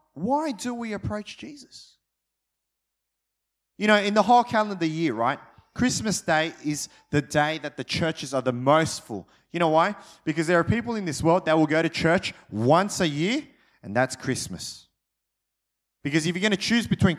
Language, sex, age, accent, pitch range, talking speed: English, male, 30-49, Australian, 145-205 Hz, 185 wpm